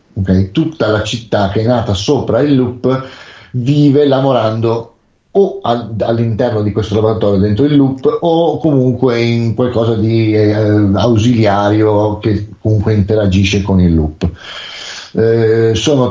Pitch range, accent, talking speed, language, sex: 105-130 Hz, native, 135 wpm, Italian, male